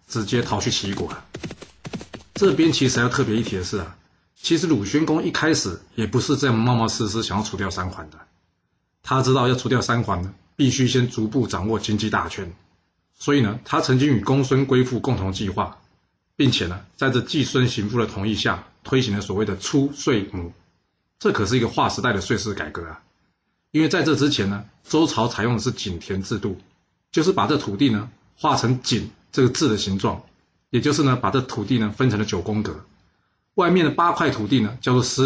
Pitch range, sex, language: 100-135 Hz, male, Chinese